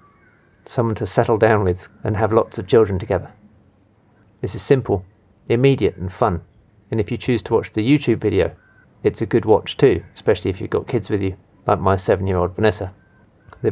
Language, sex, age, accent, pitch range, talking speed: English, male, 40-59, British, 95-115 Hz, 190 wpm